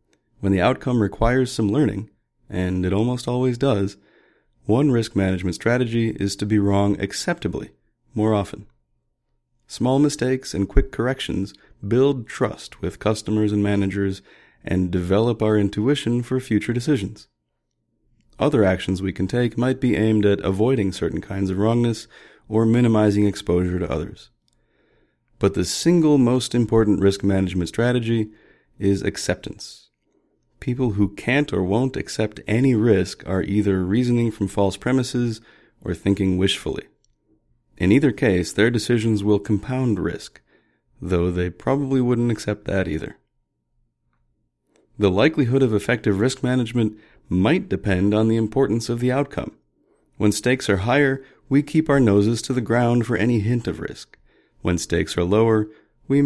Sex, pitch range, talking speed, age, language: male, 100-125 Hz, 145 wpm, 30-49, English